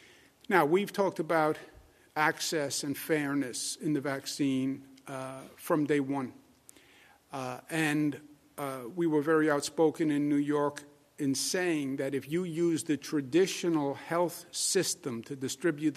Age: 50-69